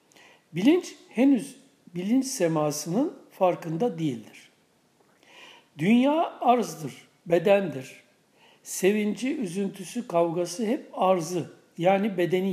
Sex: male